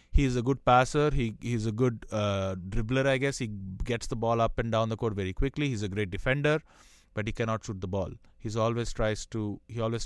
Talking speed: 240 wpm